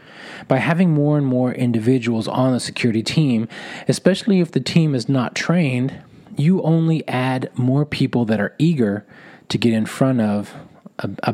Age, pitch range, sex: 30-49, 110-130 Hz, male